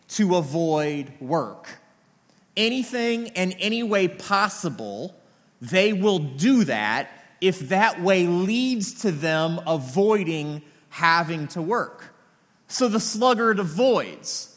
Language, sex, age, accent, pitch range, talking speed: English, male, 30-49, American, 170-220 Hz, 105 wpm